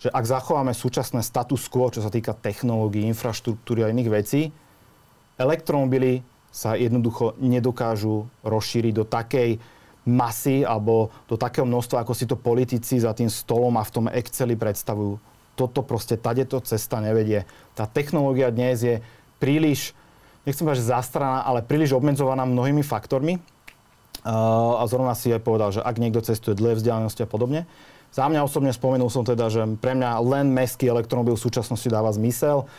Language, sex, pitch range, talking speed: Slovak, male, 115-130 Hz, 160 wpm